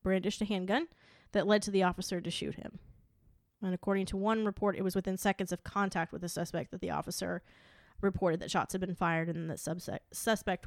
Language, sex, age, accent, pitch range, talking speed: English, female, 20-39, American, 180-200 Hz, 215 wpm